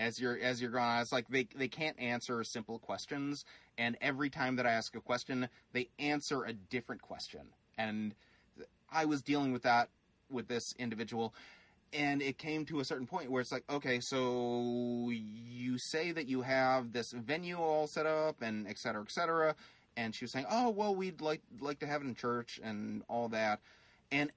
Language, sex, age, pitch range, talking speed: English, male, 30-49, 115-150 Hz, 200 wpm